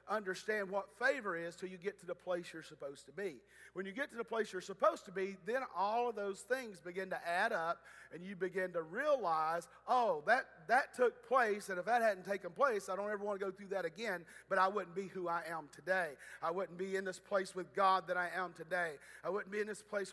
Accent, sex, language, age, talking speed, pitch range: American, male, English, 40-59, 250 wpm, 180-205 Hz